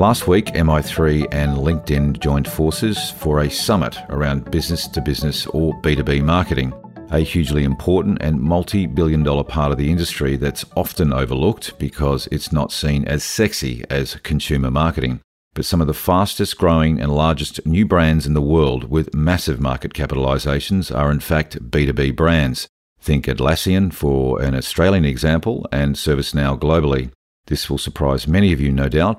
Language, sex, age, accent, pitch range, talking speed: English, male, 50-69, Australian, 70-80 Hz, 150 wpm